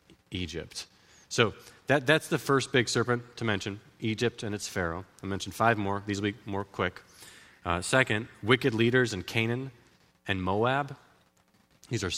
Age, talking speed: 30-49, 165 wpm